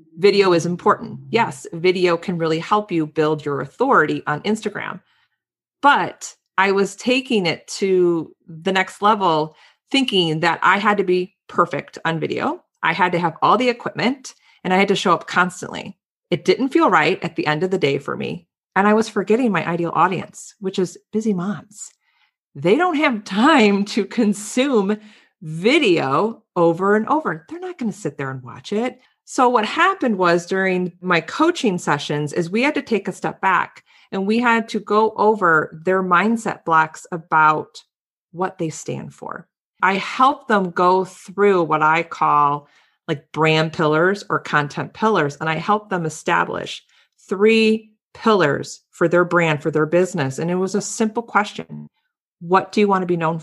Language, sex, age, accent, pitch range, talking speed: English, female, 40-59, American, 165-215 Hz, 175 wpm